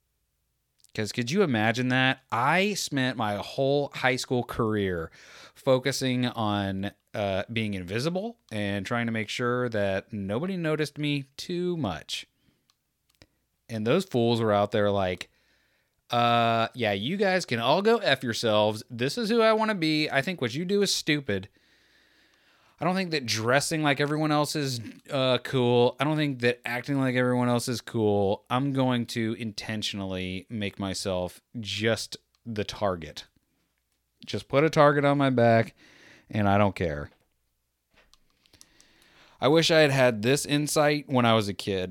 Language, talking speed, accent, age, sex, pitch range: English, 160 wpm, American, 30-49, male, 105-140 Hz